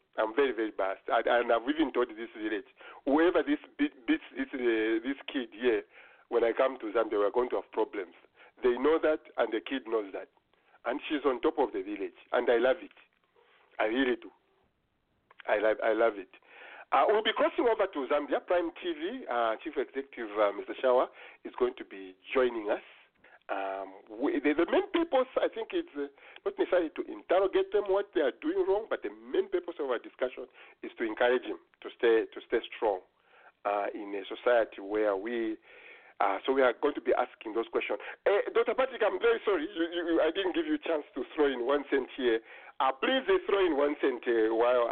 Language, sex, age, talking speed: English, male, 50-69, 210 wpm